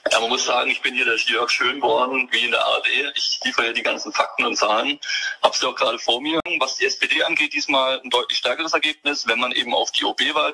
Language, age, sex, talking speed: German, 20-39, male, 245 wpm